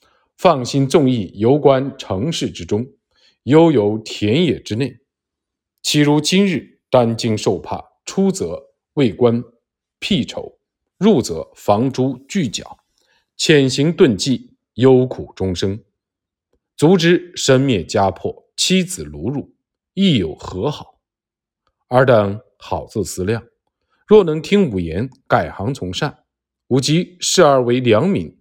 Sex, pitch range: male, 105-155 Hz